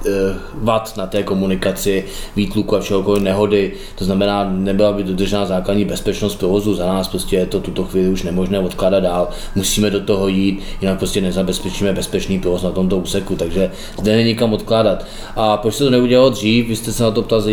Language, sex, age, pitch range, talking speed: Czech, male, 20-39, 95-105 Hz, 190 wpm